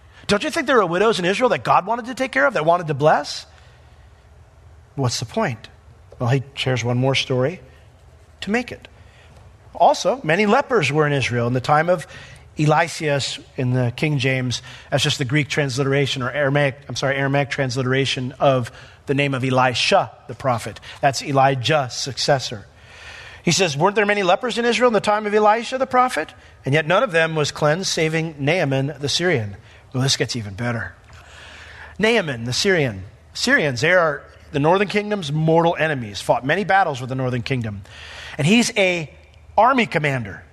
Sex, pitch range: male, 125-205 Hz